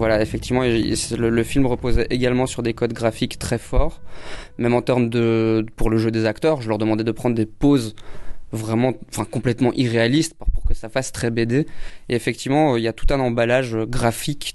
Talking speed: 195 wpm